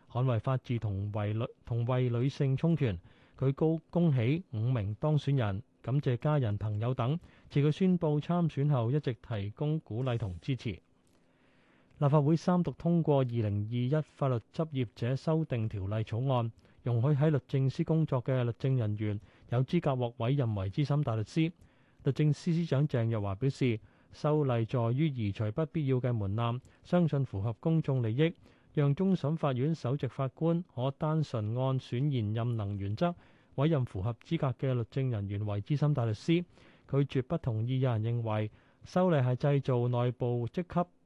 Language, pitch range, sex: Chinese, 115-150 Hz, male